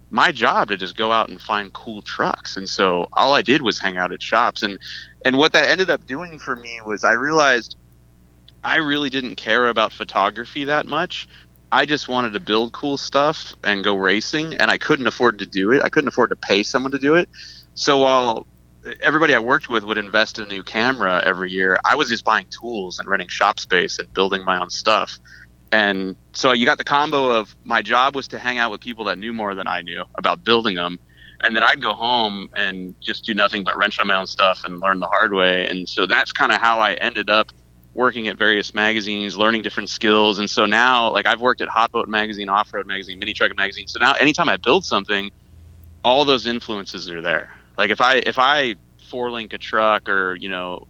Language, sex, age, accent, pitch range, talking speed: English, male, 30-49, American, 95-115 Hz, 230 wpm